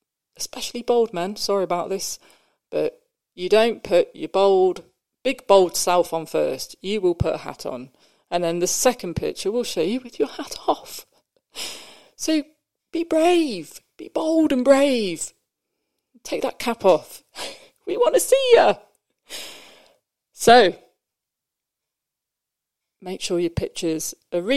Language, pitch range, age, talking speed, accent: English, 180-265 Hz, 40-59, 140 wpm, British